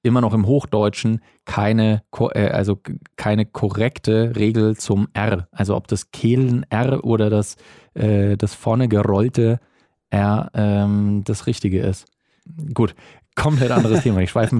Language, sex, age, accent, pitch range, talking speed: German, male, 20-39, German, 100-115 Hz, 120 wpm